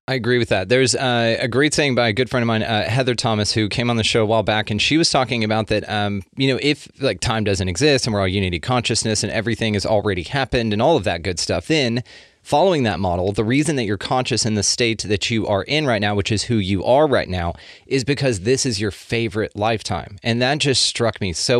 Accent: American